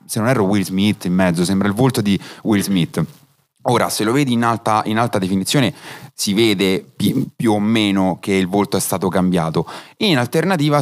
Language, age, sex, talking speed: Italian, 30-49, male, 200 wpm